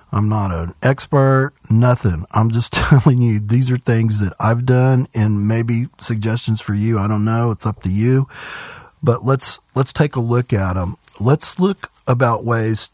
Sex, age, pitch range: male, 40-59, 110-130 Hz